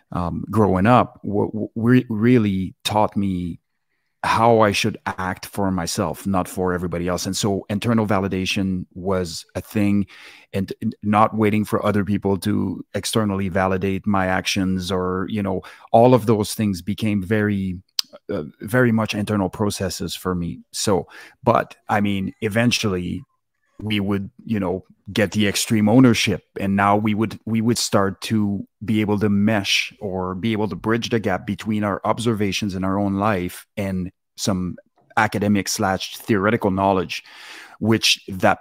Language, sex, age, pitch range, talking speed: English, male, 30-49, 95-110 Hz, 155 wpm